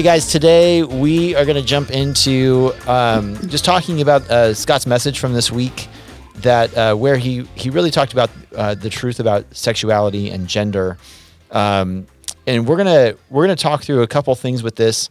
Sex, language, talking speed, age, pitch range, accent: male, English, 185 wpm, 30-49, 110-140 Hz, American